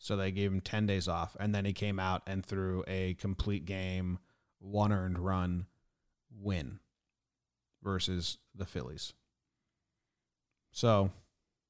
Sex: male